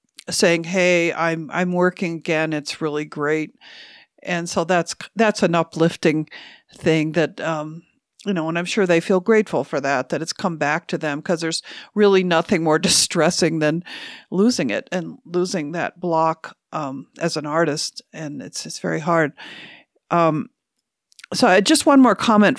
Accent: American